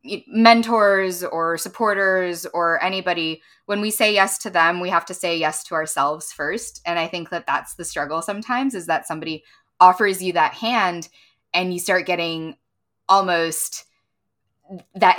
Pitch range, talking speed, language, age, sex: 165-215 Hz, 160 wpm, English, 10-29, female